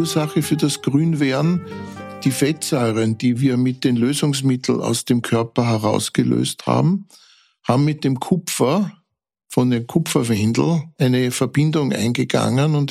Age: 60-79